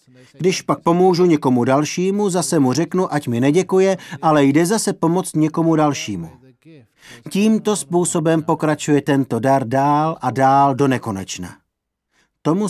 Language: Czech